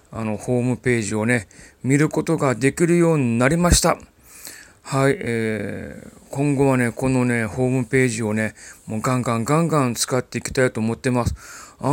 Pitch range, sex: 115-150 Hz, male